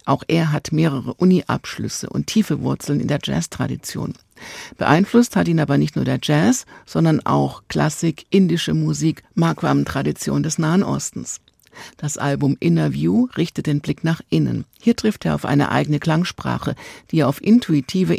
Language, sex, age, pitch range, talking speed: German, female, 50-69, 130-170 Hz, 150 wpm